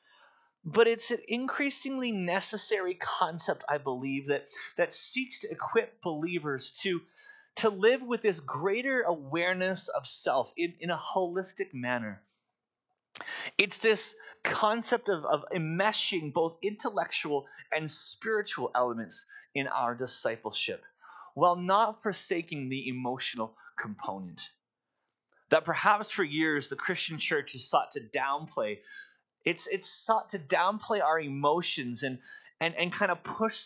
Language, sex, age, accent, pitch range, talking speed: English, male, 30-49, American, 145-220 Hz, 130 wpm